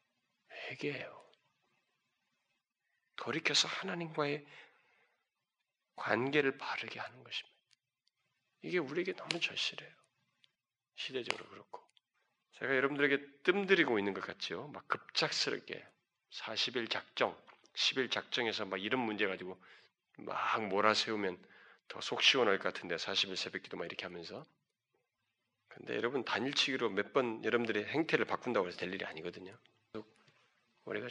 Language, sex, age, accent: Korean, male, 40-59, native